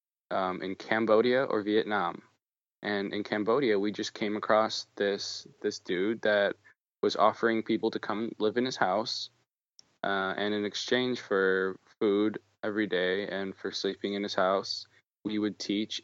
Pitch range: 95-115 Hz